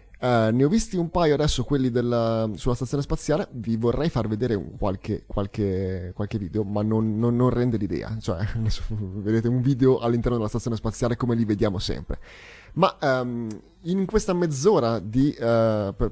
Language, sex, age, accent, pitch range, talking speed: Italian, male, 20-39, native, 105-125 Hz, 175 wpm